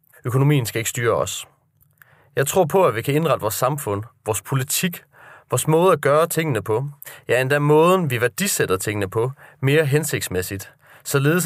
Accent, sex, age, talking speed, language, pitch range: native, male, 30-49, 170 wpm, Danish, 120-150 Hz